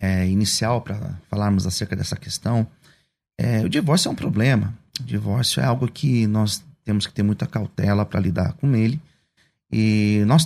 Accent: Brazilian